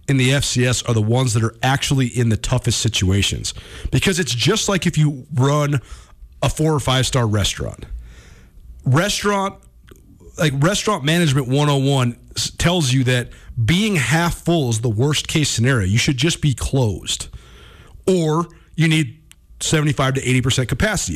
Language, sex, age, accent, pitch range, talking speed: English, male, 40-59, American, 120-165 Hz, 150 wpm